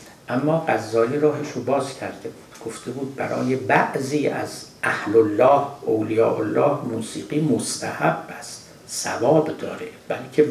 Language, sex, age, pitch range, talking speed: Persian, male, 60-79, 115-150 Hz, 125 wpm